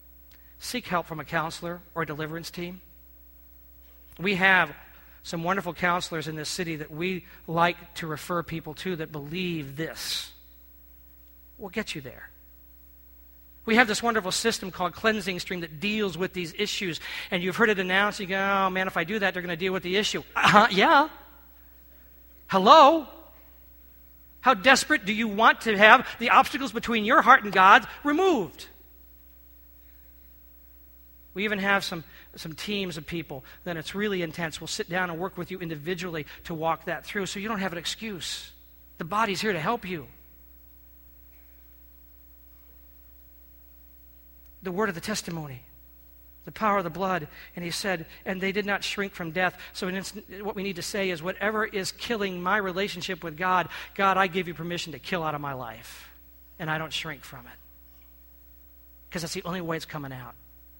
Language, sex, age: English, male, 50-69